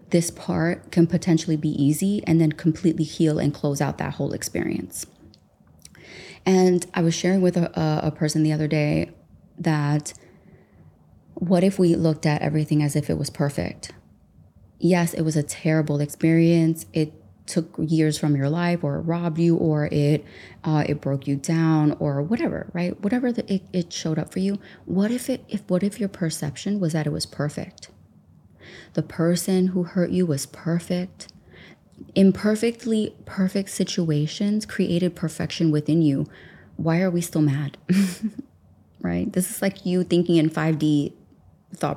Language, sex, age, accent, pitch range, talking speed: English, female, 20-39, American, 155-185 Hz, 160 wpm